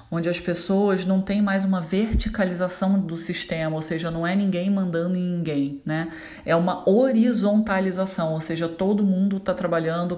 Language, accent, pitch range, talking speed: Portuguese, Brazilian, 160-180 Hz, 165 wpm